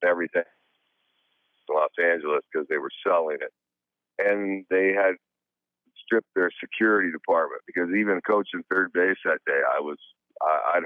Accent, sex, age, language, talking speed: American, male, 50-69, English, 145 wpm